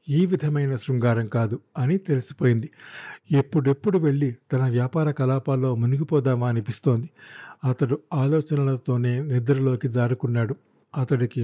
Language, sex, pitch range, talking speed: Telugu, male, 125-160 Hz, 95 wpm